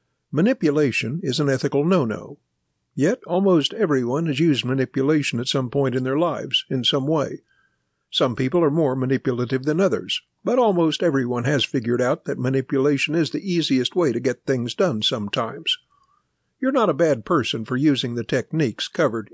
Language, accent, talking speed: English, American, 170 wpm